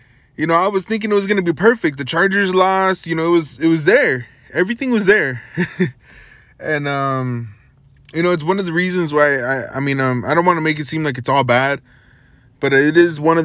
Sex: male